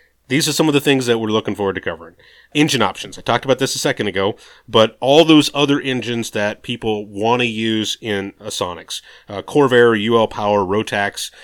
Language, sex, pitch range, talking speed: English, male, 105-130 Hz, 205 wpm